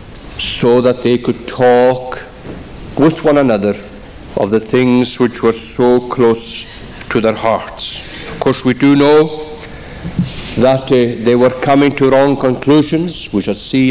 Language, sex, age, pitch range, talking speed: English, male, 60-79, 120-145 Hz, 145 wpm